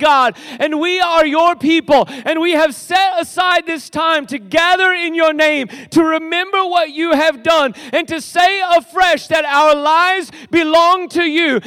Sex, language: male, English